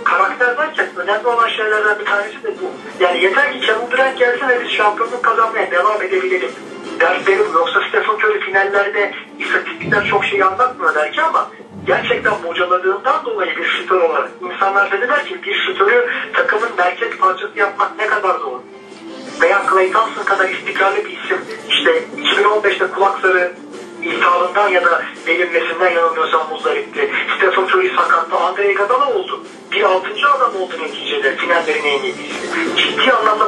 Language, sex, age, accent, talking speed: Turkish, male, 40-59, native, 150 wpm